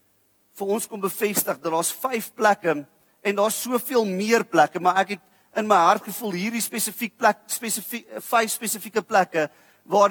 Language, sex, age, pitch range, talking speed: English, male, 40-59, 180-225 Hz, 170 wpm